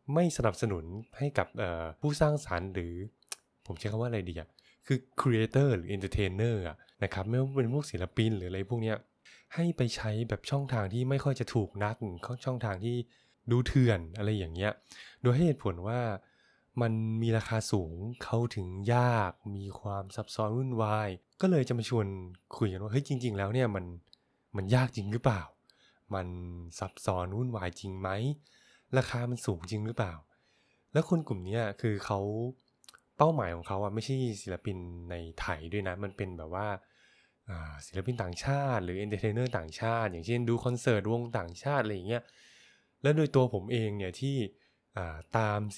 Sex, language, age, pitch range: male, Thai, 20-39, 95-125 Hz